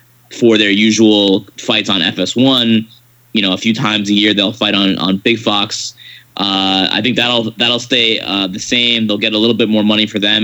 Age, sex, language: 10-29, male, English